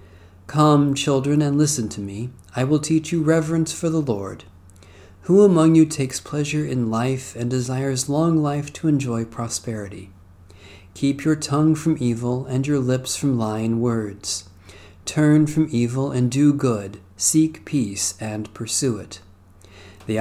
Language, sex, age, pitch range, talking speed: English, male, 40-59, 100-140 Hz, 150 wpm